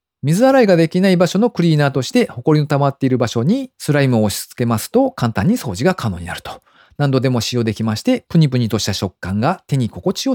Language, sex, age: Japanese, male, 40-59